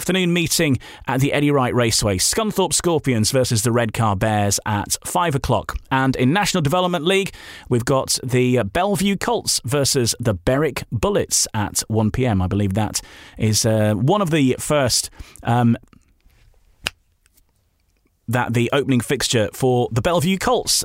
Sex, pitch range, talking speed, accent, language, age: male, 120-170 Hz, 145 wpm, British, English, 30-49